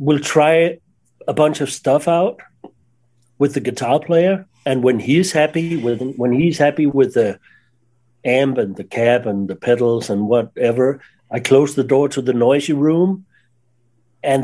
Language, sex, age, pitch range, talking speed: English, male, 60-79, 120-160 Hz, 160 wpm